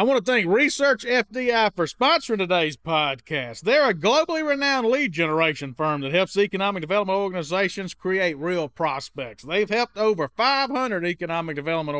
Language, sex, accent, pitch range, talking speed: English, male, American, 165-225 Hz, 155 wpm